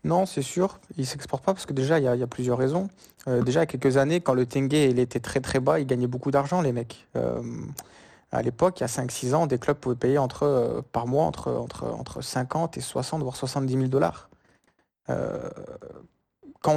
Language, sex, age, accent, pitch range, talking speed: French, male, 20-39, French, 125-150 Hz, 235 wpm